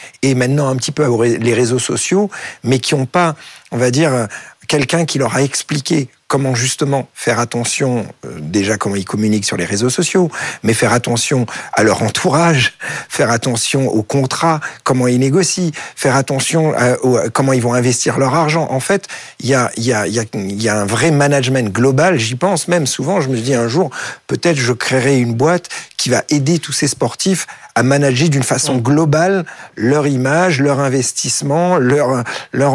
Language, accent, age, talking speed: French, French, 50-69, 185 wpm